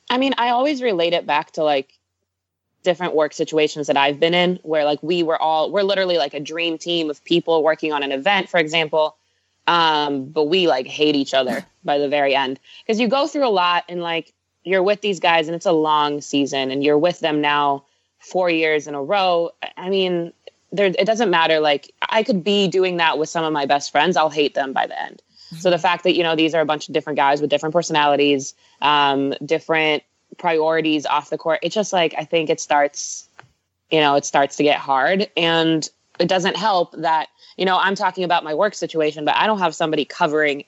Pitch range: 145-175 Hz